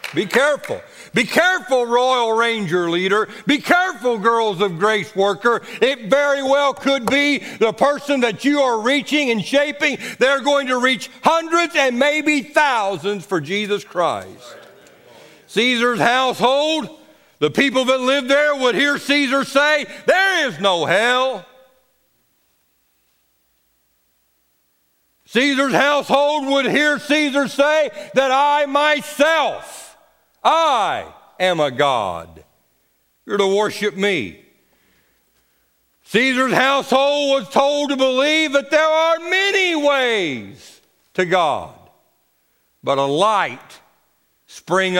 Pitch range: 205-285 Hz